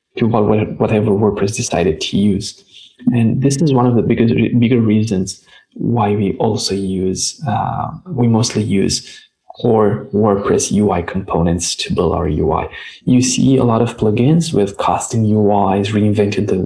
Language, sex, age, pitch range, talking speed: English, male, 20-39, 100-130 Hz, 150 wpm